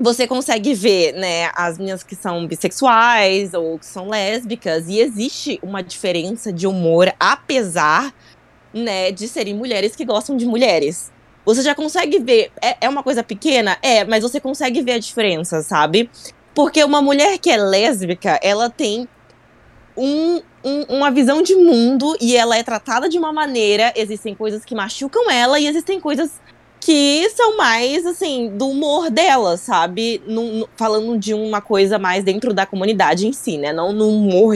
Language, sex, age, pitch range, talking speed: Portuguese, female, 20-39, 195-275 Hz, 165 wpm